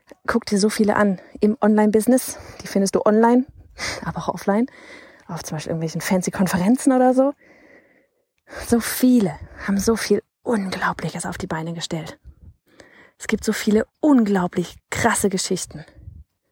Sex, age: female, 30-49